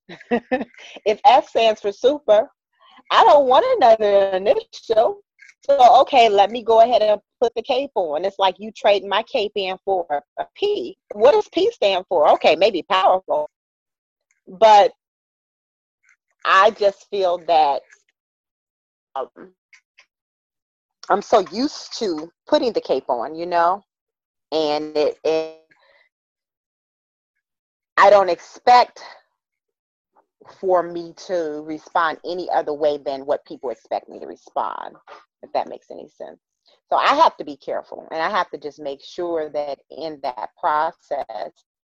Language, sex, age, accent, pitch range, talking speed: English, female, 30-49, American, 160-245 Hz, 140 wpm